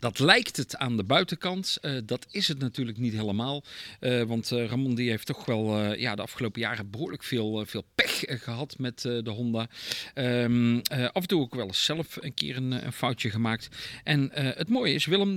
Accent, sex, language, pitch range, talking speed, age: Dutch, male, Dutch, 115-150 Hz, 225 wpm, 40-59